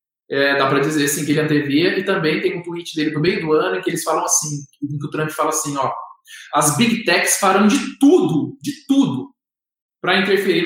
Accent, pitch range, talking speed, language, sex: Brazilian, 155-195 Hz, 225 wpm, Portuguese, male